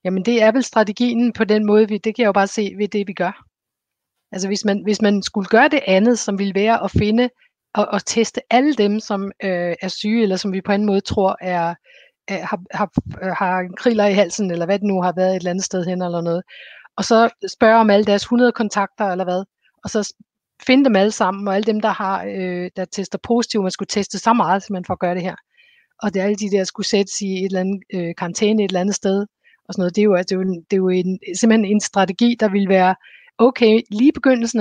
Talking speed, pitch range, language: 250 wpm, 190-220 Hz, Danish